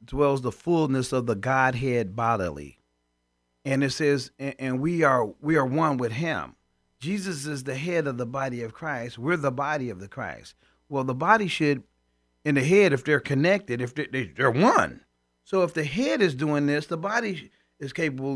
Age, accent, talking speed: 40-59, American, 195 wpm